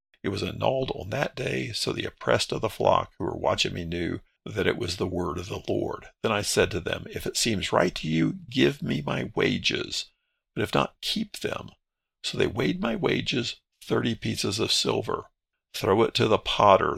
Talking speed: 210 wpm